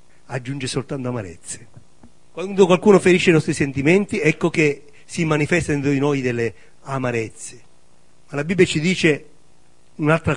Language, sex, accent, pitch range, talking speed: Italian, male, native, 135-195 Hz, 140 wpm